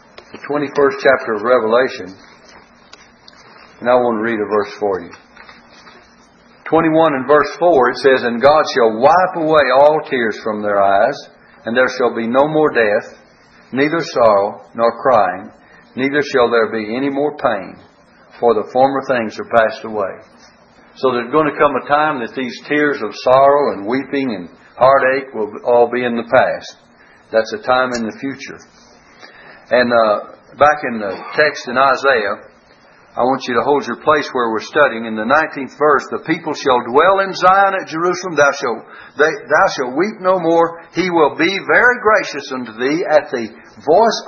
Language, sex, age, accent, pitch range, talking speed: English, male, 60-79, American, 125-160 Hz, 175 wpm